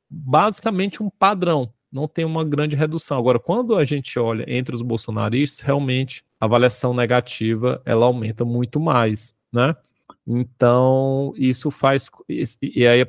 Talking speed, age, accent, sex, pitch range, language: 140 wpm, 20-39, Brazilian, male, 120-150 Hz, Portuguese